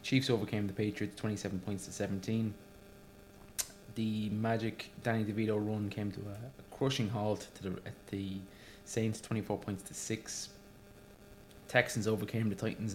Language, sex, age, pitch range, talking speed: English, male, 20-39, 100-110 Hz, 150 wpm